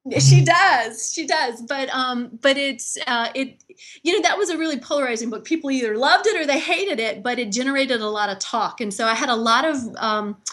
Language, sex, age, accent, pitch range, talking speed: English, female, 30-49, American, 210-265 Hz, 235 wpm